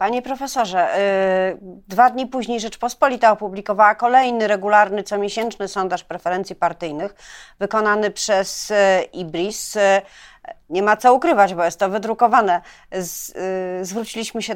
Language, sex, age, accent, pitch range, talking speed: Polish, female, 40-59, native, 190-235 Hz, 110 wpm